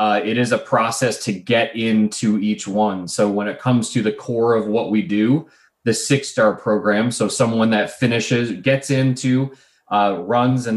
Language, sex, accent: English, male, American